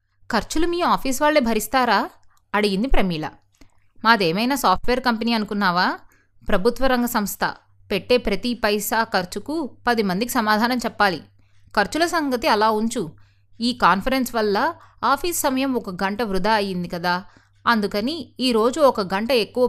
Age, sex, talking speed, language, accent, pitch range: 20-39, female, 125 wpm, Telugu, native, 190-250 Hz